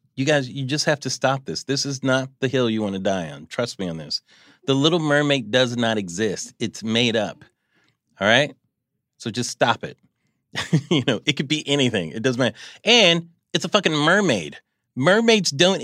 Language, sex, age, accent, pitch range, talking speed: English, male, 30-49, American, 125-190 Hz, 200 wpm